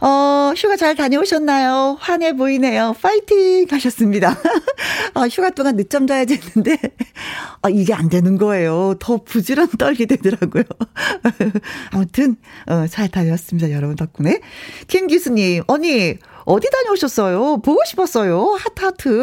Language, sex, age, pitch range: Korean, female, 40-59, 195-275 Hz